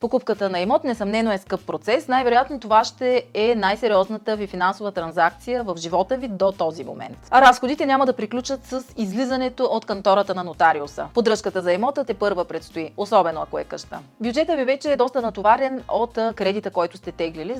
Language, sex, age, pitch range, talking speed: Bulgarian, female, 30-49, 180-255 Hz, 180 wpm